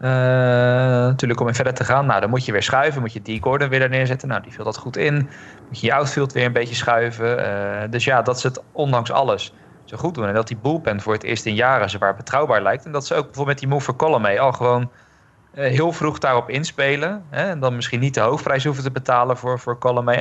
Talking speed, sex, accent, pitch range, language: 260 wpm, male, Dutch, 115-130 Hz, Dutch